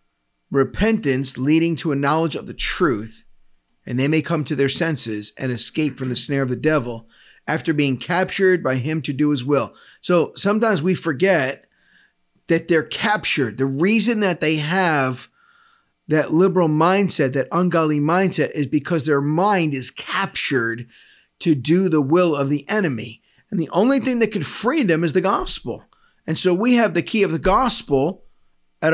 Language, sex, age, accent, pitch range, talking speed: English, male, 40-59, American, 140-180 Hz, 175 wpm